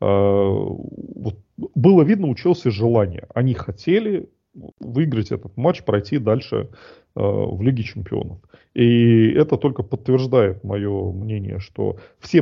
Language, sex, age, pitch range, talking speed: Russian, male, 30-49, 100-135 Hz, 110 wpm